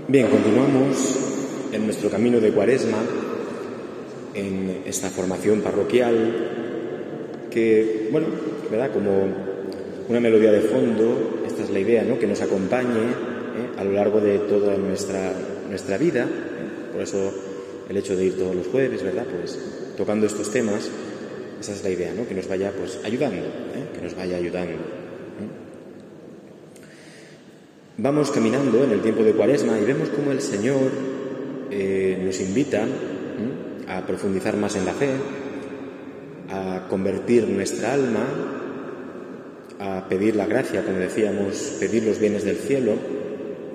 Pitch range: 95-135 Hz